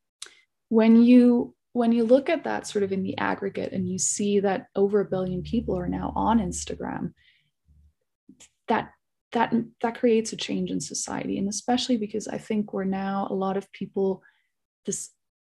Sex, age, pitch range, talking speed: female, 20-39, 180-220 Hz, 170 wpm